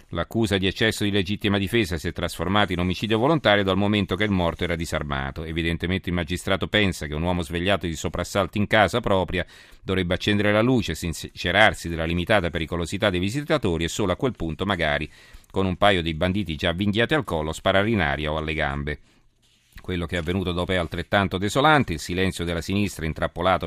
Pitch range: 80-105 Hz